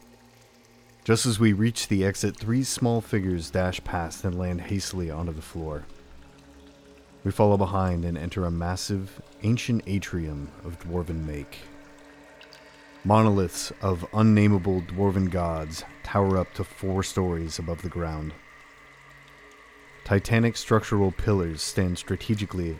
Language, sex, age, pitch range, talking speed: English, male, 30-49, 85-105 Hz, 125 wpm